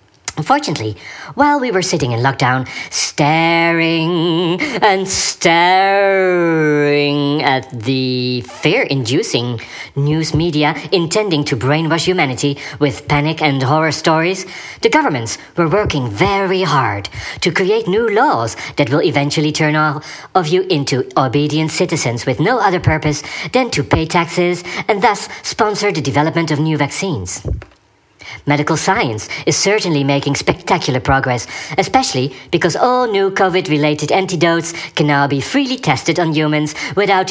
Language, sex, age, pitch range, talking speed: English, male, 40-59, 140-185 Hz, 130 wpm